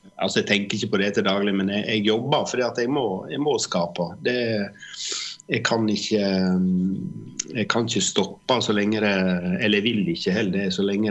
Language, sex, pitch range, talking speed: English, male, 95-110 Hz, 190 wpm